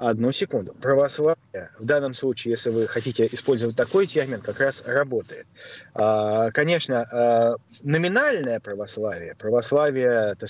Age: 30-49